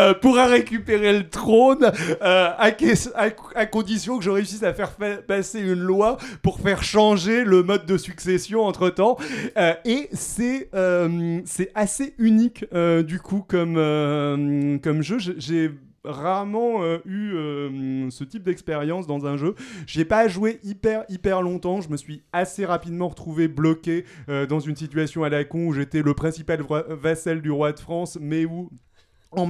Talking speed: 175 wpm